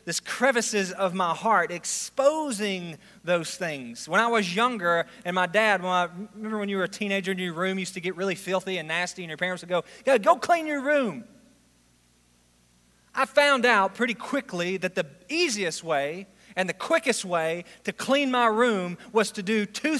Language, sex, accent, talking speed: English, male, American, 195 wpm